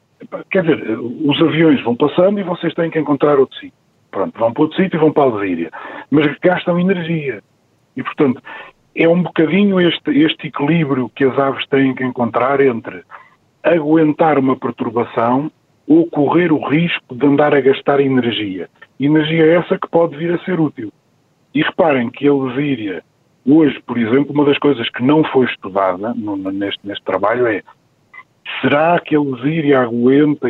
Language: Portuguese